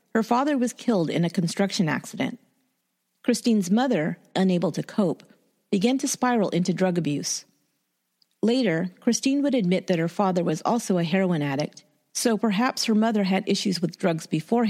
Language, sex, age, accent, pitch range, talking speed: English, female, 40-59, American, 180-235 Hz, 165 wpm